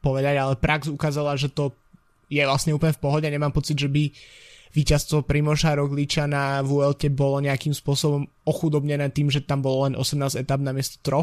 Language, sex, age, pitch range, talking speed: Slovak, male, 20-39, 140-155 Hz, 180 wpm